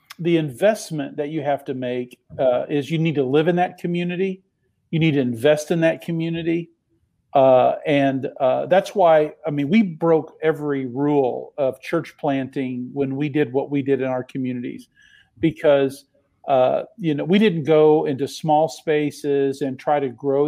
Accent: American